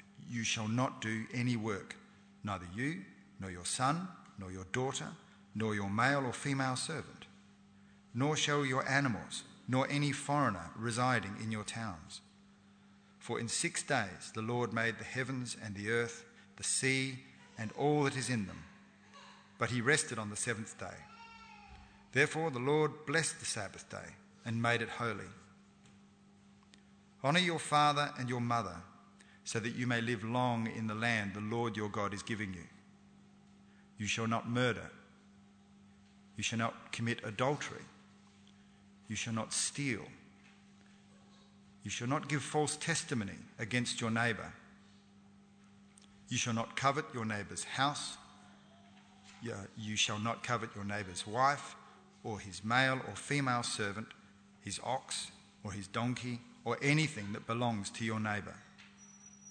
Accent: Australian